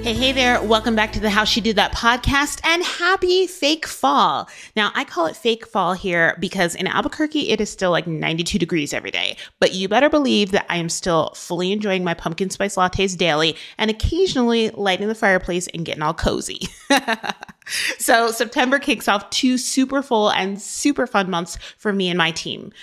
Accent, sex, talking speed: American, female, 195 wpm